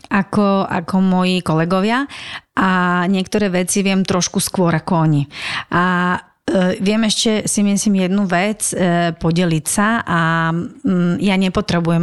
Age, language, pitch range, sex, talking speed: 30-49, Slovak, 170-190 Hz, female, 135 wpm